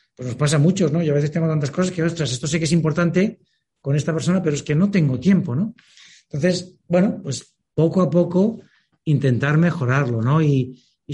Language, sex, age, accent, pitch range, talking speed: Spanish, male, 60-79, Spanish, 130-165 Hz, 215 wpm